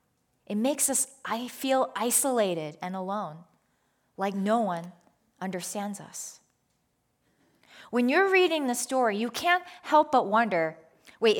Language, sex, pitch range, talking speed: English, female, 195-275 Hz, 125 wpm